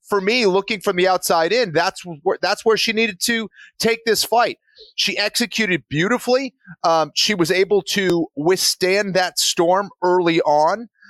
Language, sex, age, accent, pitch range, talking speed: English, male, 30-49, American, 155-205 Hz, 160 wpm